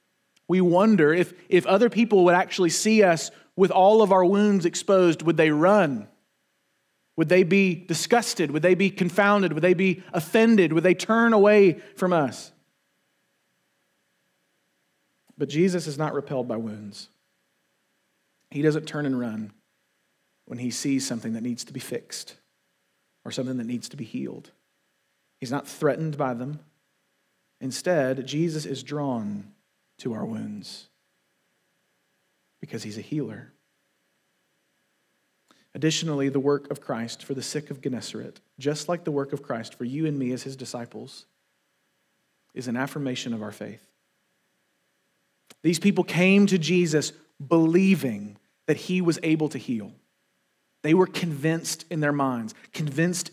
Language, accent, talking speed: English, American, 145 wpm